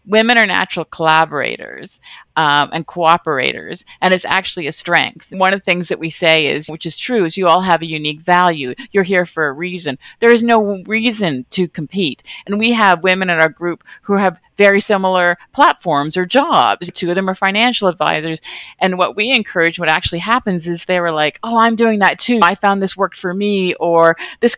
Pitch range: 170-205 Hz